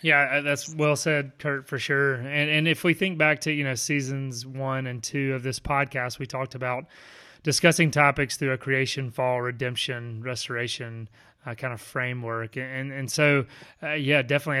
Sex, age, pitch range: male, 30-49, 125-140 Hz